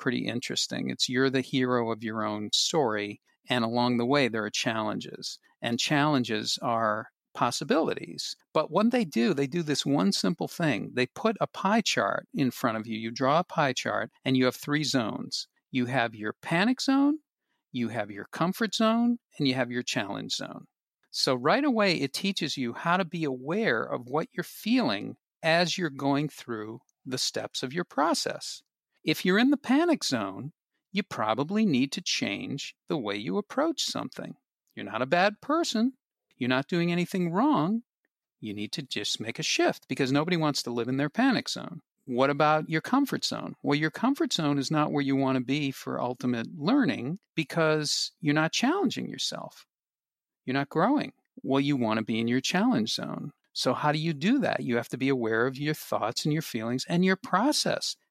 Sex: male